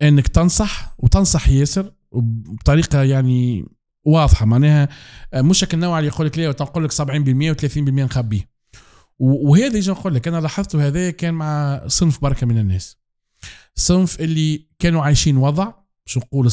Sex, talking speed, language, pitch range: male, 150 wpm, Arabic, 120-155 Hz